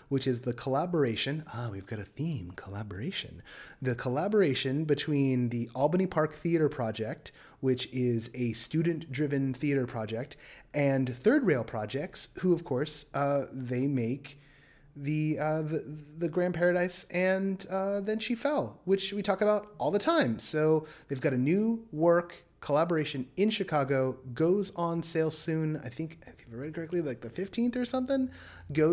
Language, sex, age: English, male, 30-49